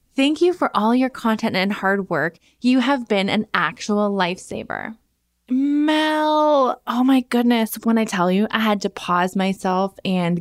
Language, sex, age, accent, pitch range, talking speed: English, female, 20-39, American, 190-240 Hz, 165 wpm